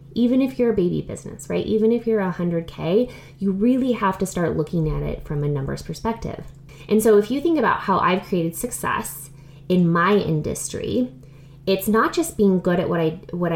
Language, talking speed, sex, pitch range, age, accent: English, 210 wpm, female, 155-220 Hz, 20-39, American